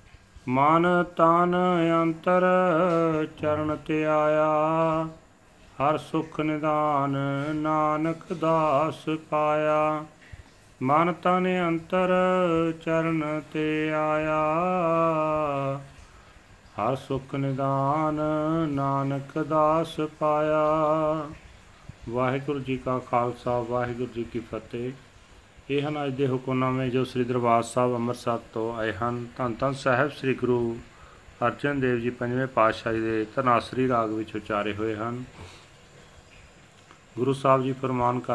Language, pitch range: Punjabi, 120-155 Hz